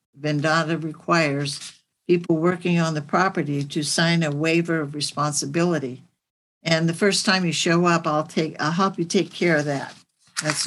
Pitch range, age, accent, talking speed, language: 150-185 Hz, 60-79, American, 170 wpm, English